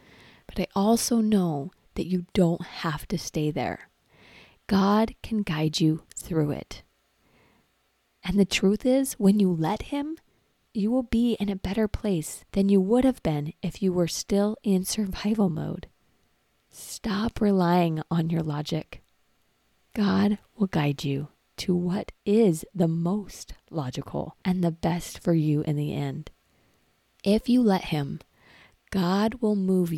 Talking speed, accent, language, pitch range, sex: 150 wpm, American, English, 155-200 Hz, female